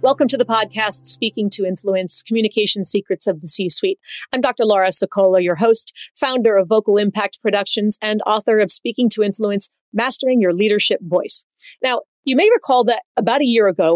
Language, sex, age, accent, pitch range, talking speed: English, female, 30-49, American, 195-245 Hz, 180 wpm